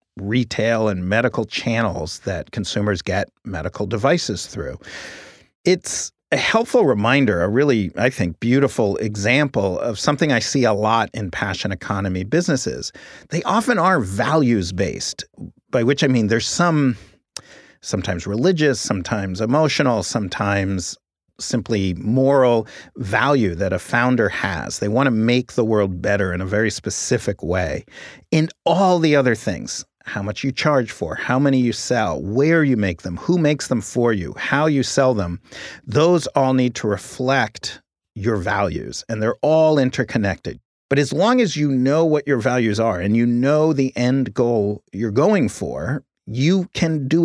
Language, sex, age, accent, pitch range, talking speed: English, male, 40-59, American, 100-140 Hz, 155 wpm